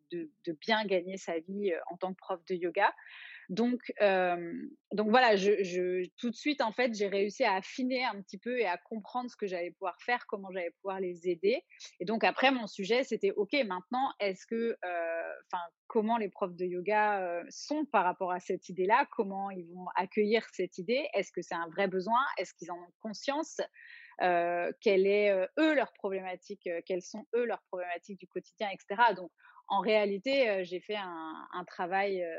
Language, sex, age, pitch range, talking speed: French, female, 30-49, 180-225 Hz, 195 wpm